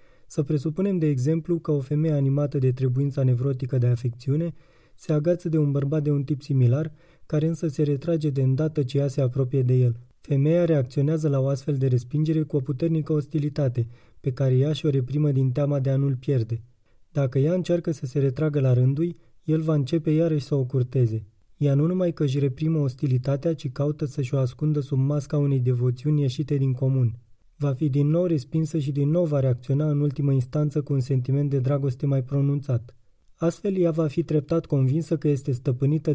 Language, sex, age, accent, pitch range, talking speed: Romanian, male, 20-39, native, 130-155 Hz, 200 wpm